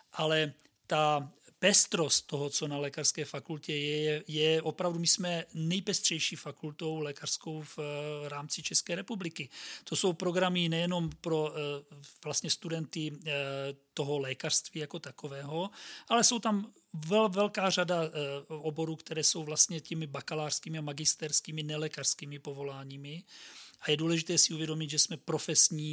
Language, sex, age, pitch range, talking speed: Czech, male, 40-59, 150-180 Hz, 130 wpm